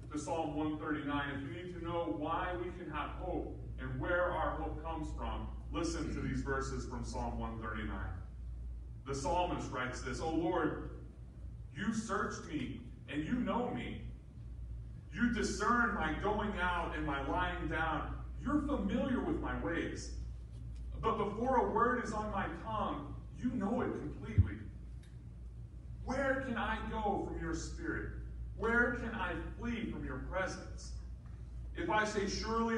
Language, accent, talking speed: English, American, 150 wpm